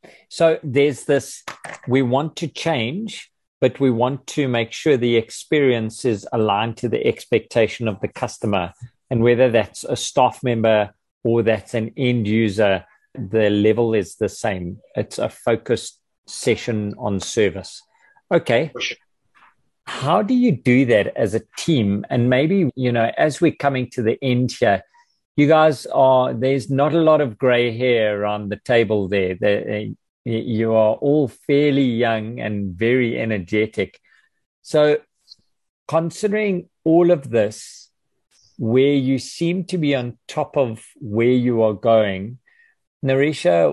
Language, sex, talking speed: English, male, 145 wpm